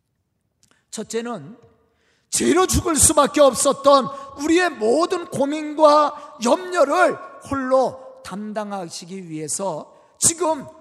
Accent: native